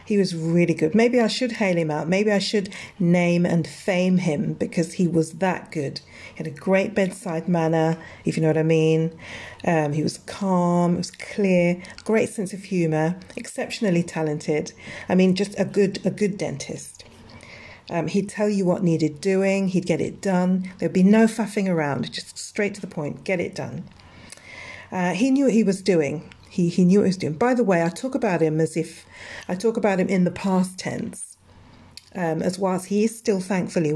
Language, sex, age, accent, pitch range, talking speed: English, female, 40-59, British, 165-200 Hz, 205 wpm